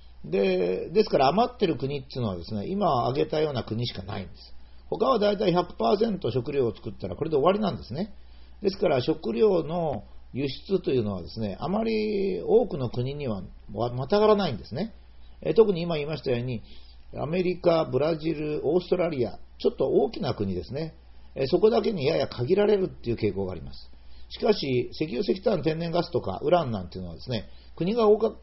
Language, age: Japanese, 50-69